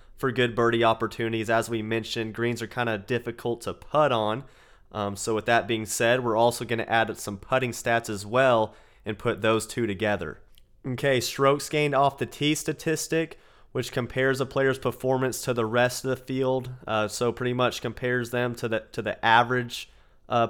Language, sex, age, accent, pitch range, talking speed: English, male, 30-49, American, 115-130 Hz, 195 wpm